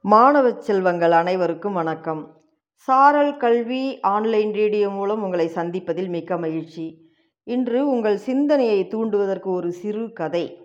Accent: native